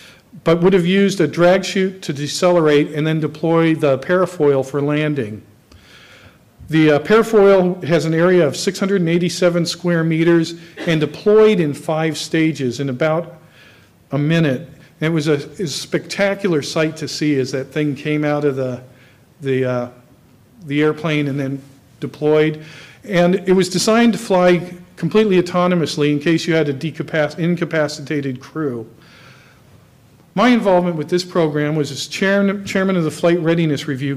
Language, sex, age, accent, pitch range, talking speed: English, male, 50-69, American, 145-175 Hz, 165 wpm